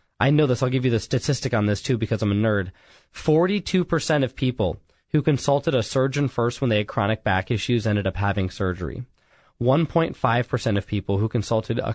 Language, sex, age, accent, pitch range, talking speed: English, male, 20-39, American, 105-145 Hz, 195 wpm